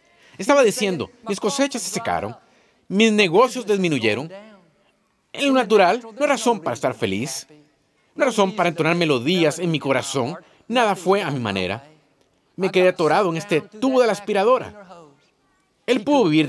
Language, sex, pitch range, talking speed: Spanish, male, 155-220 Hz, 160 wpm